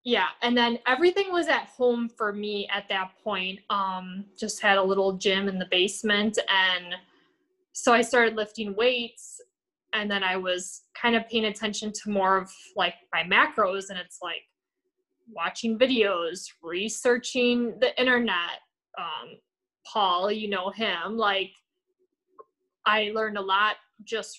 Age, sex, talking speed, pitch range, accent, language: 20-39, female, 150 wpm, 190-235 Hz, American, English